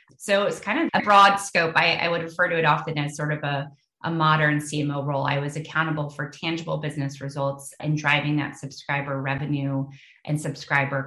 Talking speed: 195 wpm